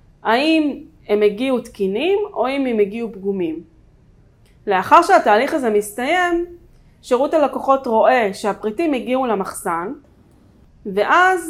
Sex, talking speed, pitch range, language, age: female, 105 wpm, 210-295 Hz, Hebrew, 30-49